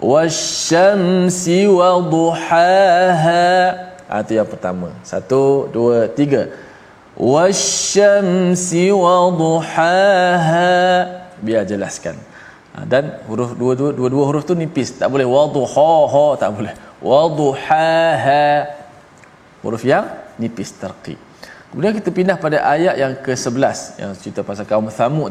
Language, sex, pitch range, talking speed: Malayalam, male, 125-180 Hz, 110 wpm